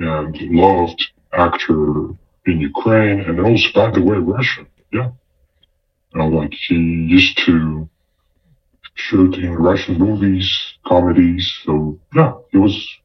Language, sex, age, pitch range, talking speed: English, female, 40-59, 80-100 Hz, 115 wpm